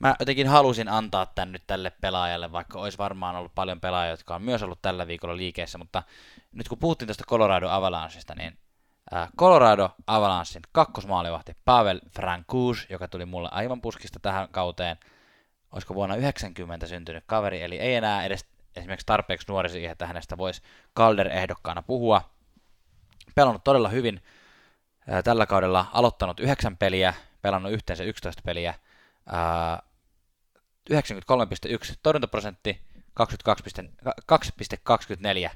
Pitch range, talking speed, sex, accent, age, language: 90-110 Hz, 125 wpm, male, native, 20-39, Finnish